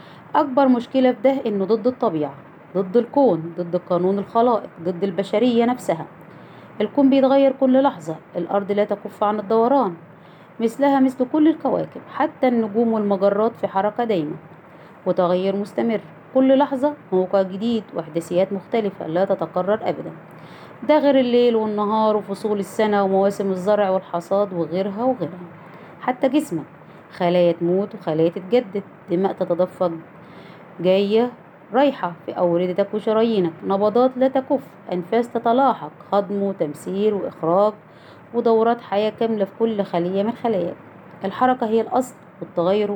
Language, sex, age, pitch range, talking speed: Arabic, female, 30-49, 180-230 Hz, 125 wpm